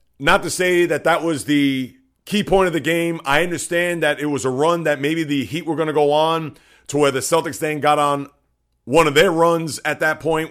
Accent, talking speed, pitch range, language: American, 240 wpm, 145-170 Hz, English